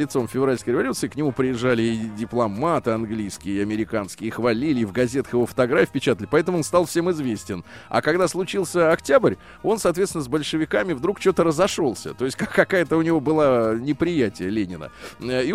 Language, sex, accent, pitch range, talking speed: Russian, male, native, 110-170 Hz, 175 wpm